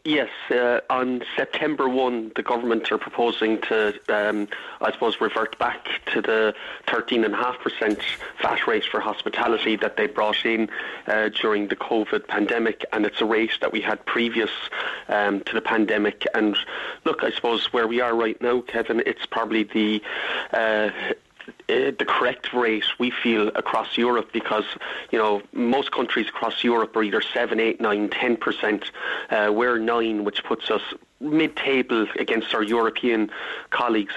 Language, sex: English, male